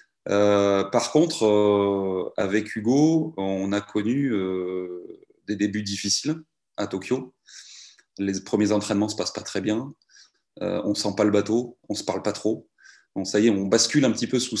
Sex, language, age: male, French, 30-49